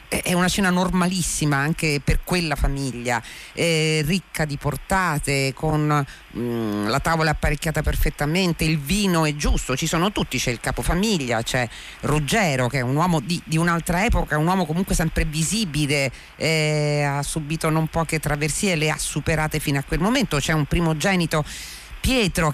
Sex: female